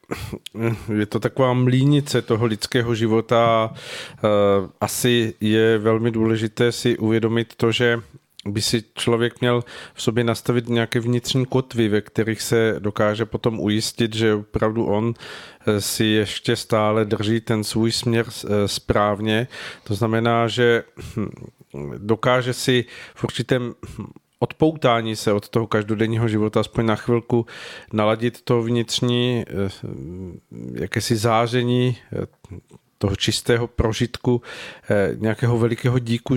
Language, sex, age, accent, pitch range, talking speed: Czech, male, 40-59, native, 110-125 Hz, 115 wpm